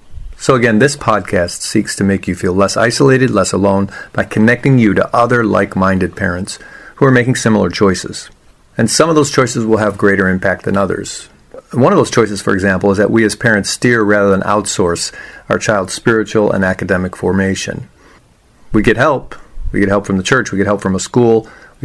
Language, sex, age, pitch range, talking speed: English, male, 40-59, 95-115 Hz, 200 wpm